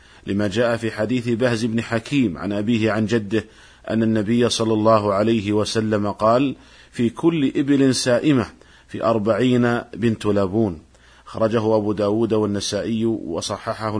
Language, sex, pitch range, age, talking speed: Arabic, male, 105-130 Hz, 50-69, 135 wpm